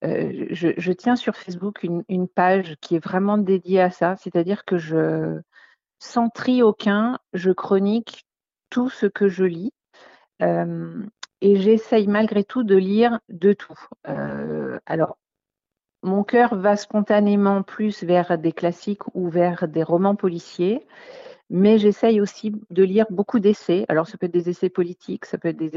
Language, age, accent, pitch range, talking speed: French, 50-69, French, 175-215 Hz, 165 wpm